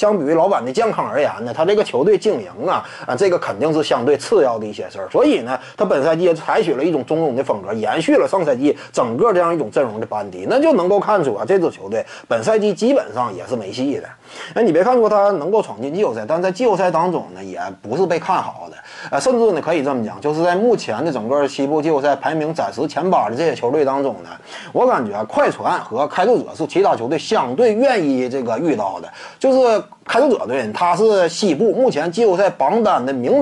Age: 30-49